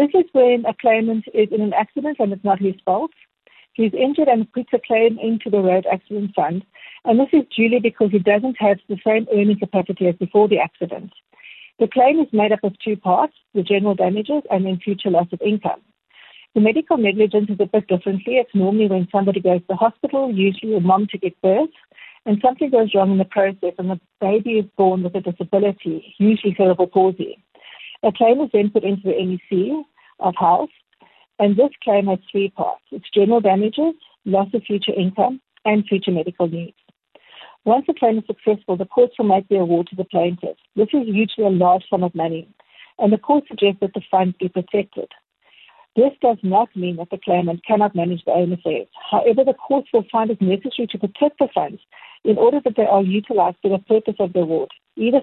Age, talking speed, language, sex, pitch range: 60-79, 210 wpm, English, female, 190-230 Hz